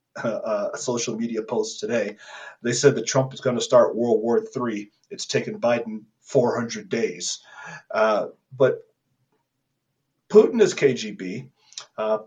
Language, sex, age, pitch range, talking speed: English, male, 40-59, 125-155 Hz, 135 wpm